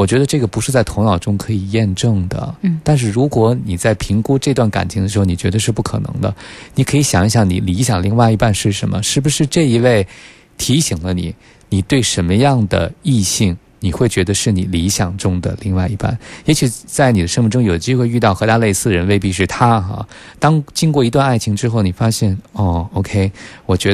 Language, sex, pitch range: Chinese, male, 95-125 Hz